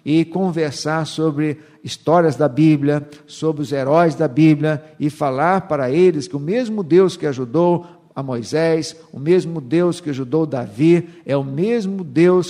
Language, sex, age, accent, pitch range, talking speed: Portuguese, male, 60-79, Brazilian, 140-175 Hz, 160 wpm